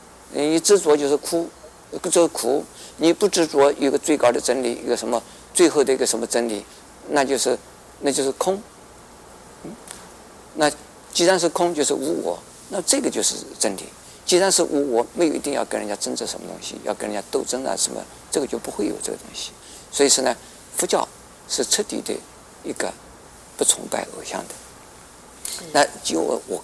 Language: Chinese